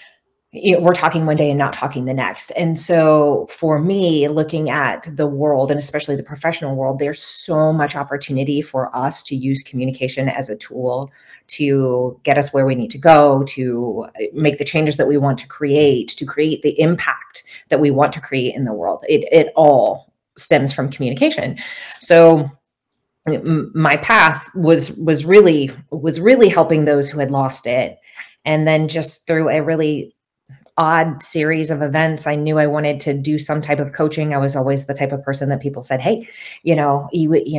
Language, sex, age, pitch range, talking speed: English, female, 30-49, 135-160 Hz, 185 wpm